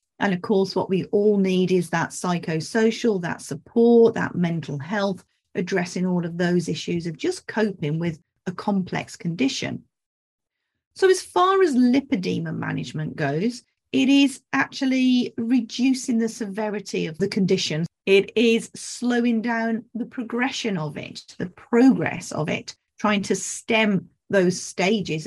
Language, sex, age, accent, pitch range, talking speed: English, female, 40-59, British, 175-230 Hz, 140 wpm